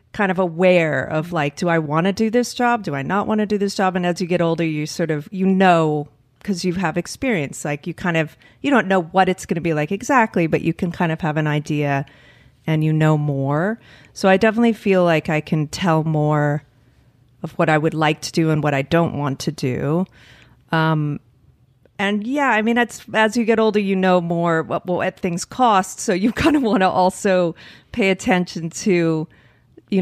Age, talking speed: 40-59, 225 wpm